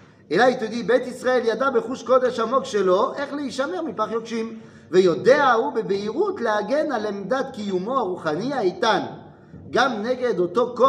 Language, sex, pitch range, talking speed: French, male, 180-265 Hz, 145 wpm